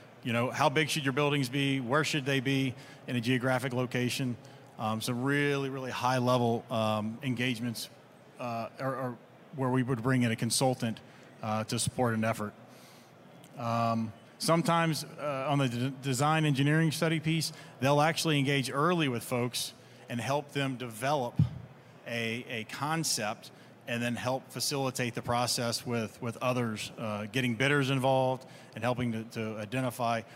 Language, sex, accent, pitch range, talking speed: English, male, American, 120-140 Hz, 150 wpm